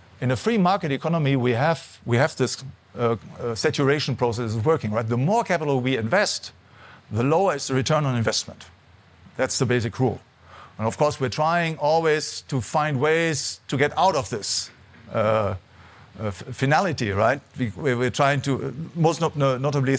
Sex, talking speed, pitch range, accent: male, 160 wpm, 110-140 Hz, German